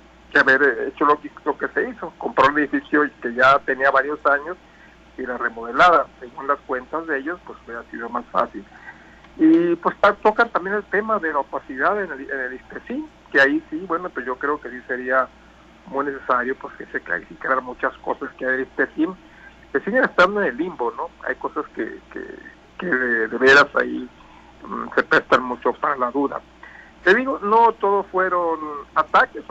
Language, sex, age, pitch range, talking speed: Spanish, male, 60-79, 130-220 Hz, 195 wpm